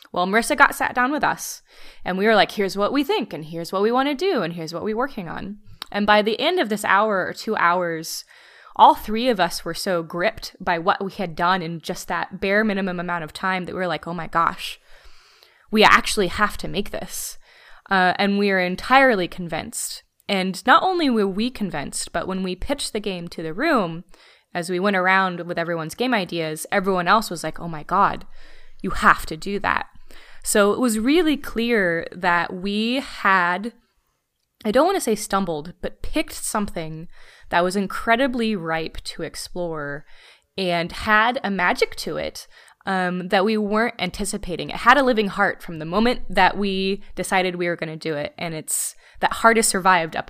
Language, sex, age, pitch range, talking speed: English, female, 20-39, 175-225 Hz, 205 wpm